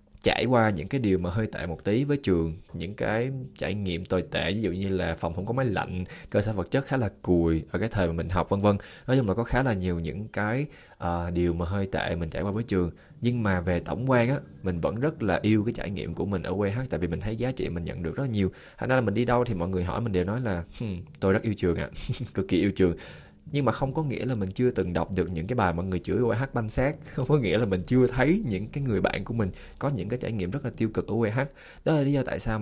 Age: 20-39